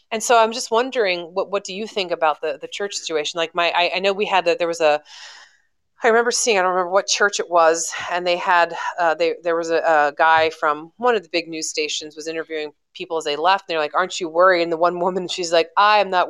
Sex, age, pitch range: female, 30-49, 160-190 Hz